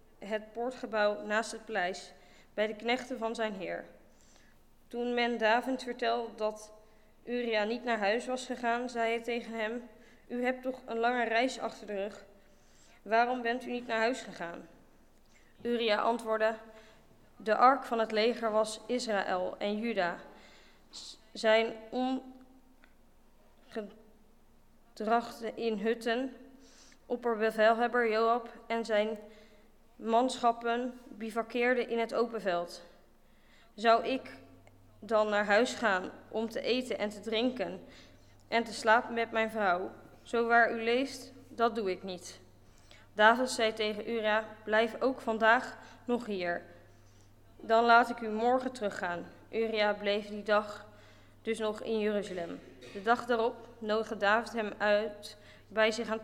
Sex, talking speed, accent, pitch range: female, 135 wpm, Dutch, 210-235 Hz